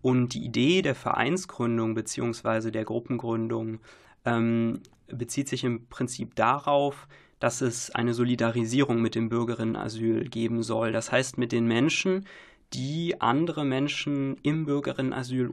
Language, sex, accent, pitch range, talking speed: German, male, German, 115-140 Hz, 130 wpm